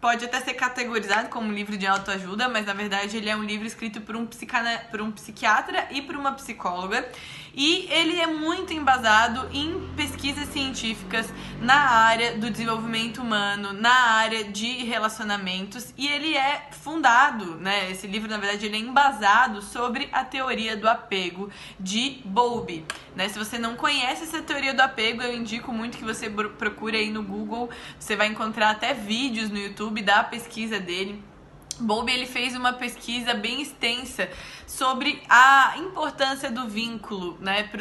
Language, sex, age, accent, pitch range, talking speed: Portuguese, female, 20-39, Brazilian, 215-260 Hz, 160 wpm